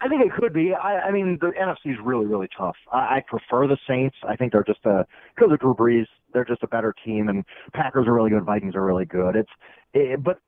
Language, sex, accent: English, male, American